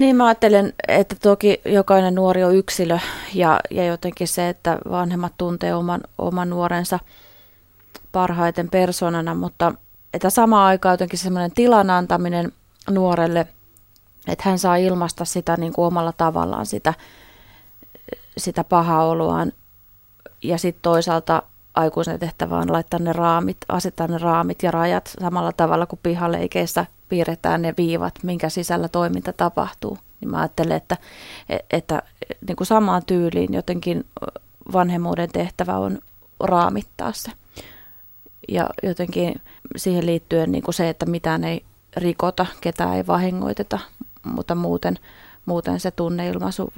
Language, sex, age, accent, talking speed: Finnish, female, 20-39, native, 130 wpm